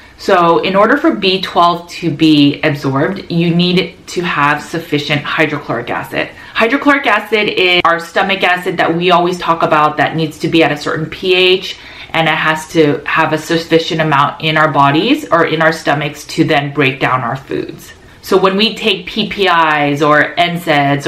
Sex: female